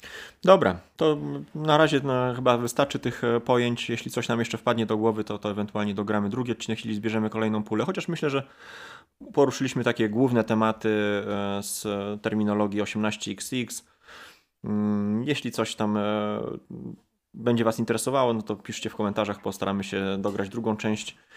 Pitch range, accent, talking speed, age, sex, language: 100-115 Hz, native, 145 wpm, 20-39, male, Polish